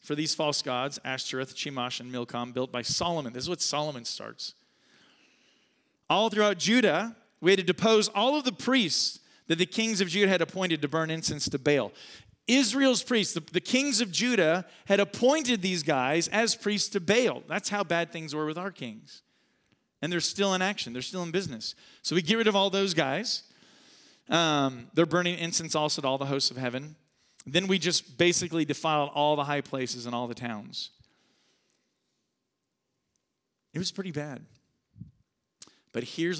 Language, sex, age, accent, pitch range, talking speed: English, male, 40-59, American, 130-180 Hz, 180 wpm